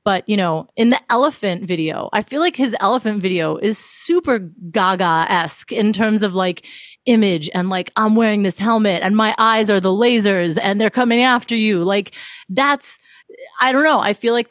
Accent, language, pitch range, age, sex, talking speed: American, English, 170-210 Hz, 30-49, female, 195 wpm